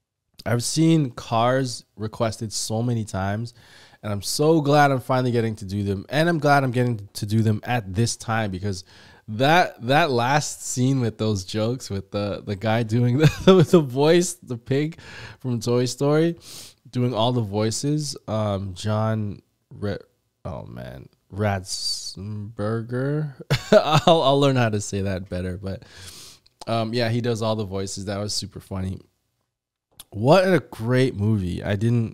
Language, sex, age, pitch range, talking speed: English, male, 20-39, 100-120 Hz, 155 wpm